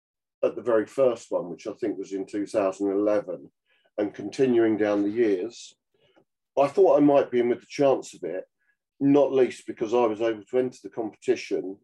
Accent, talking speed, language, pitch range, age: British, 190 wpm, English, 105-140 Hz, 40-59